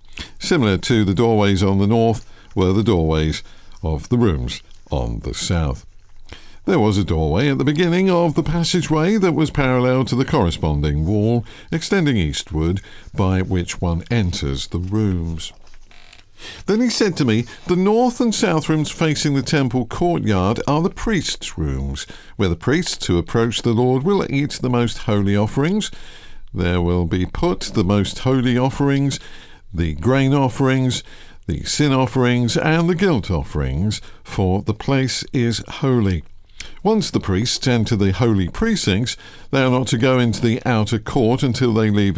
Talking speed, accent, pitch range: 160 wpm, British, 95-130 Hz